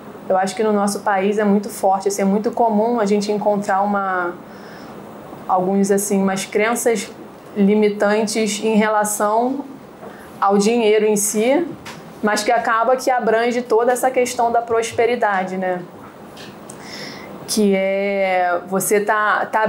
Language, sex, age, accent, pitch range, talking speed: Portuguese, female, 20-39, Brazilian, 190-220 Hz, 135 wpm